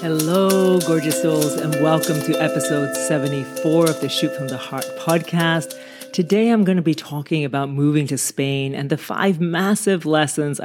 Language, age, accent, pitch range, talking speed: English, 40-59, American, 140-180 Hz, 170 wpm